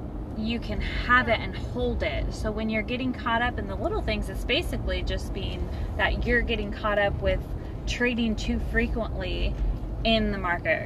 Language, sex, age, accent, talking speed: English, female, 20-39, American, 180 wpm